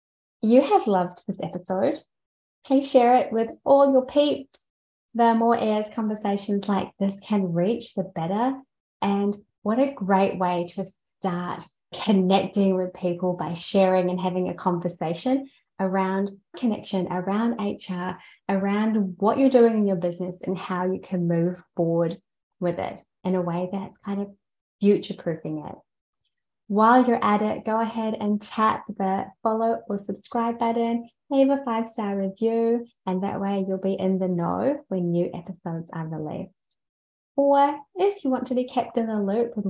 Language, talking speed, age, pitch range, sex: English, 160 wpm, 20-39, 185-230 Hz, female